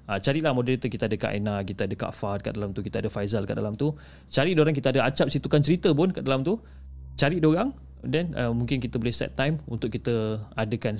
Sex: male